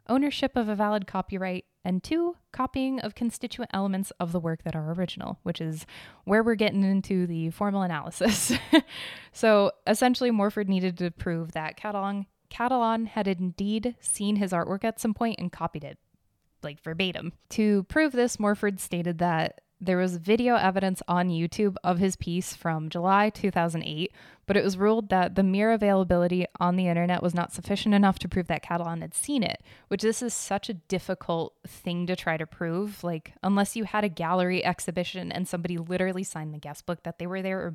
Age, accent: 10-29, American